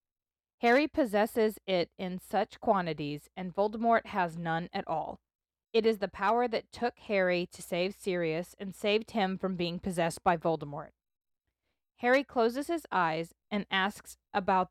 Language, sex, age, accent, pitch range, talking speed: English, female, 20-39, American, 180-235 Hz, 150 wpm